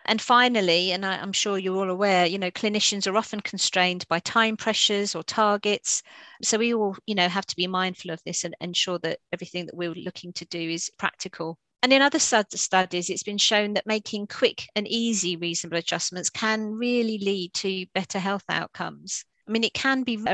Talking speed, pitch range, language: 205 wpm, 175-215 Hz, English